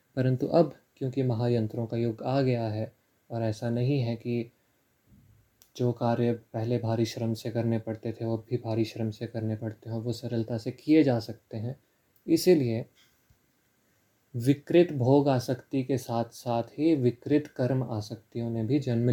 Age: 20-39